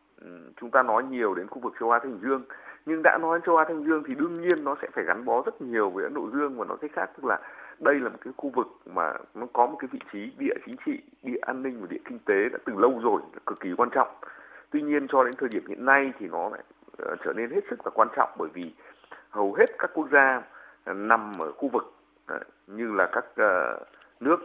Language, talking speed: Vietnamese, 250 wpm